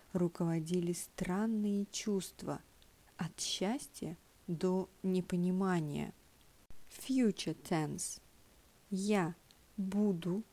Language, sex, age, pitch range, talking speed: English, female, 40-59, 175-210 Hz, 65 wpm